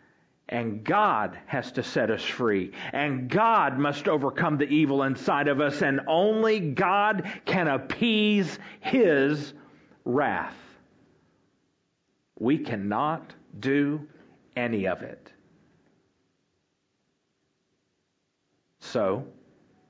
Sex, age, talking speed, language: male, 50-69, 90 wpm, English